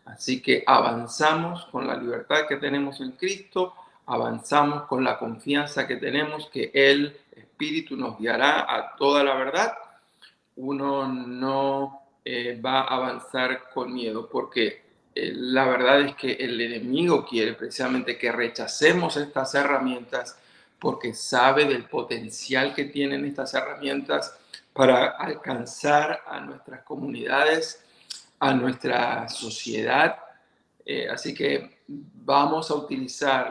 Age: 50-69